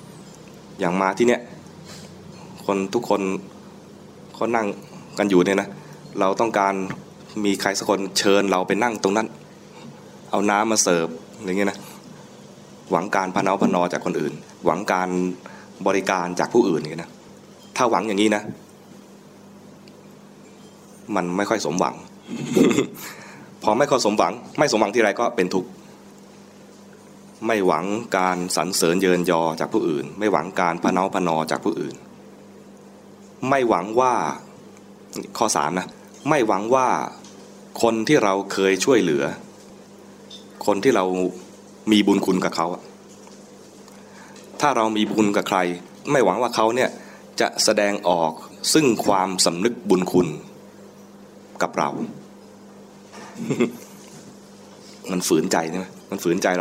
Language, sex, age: English, male, 20-39